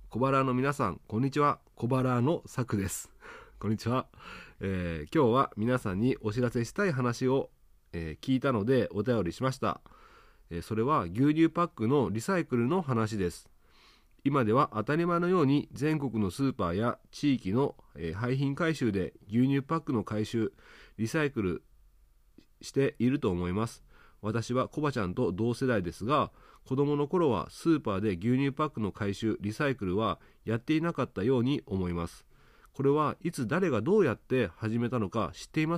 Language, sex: Japanese, male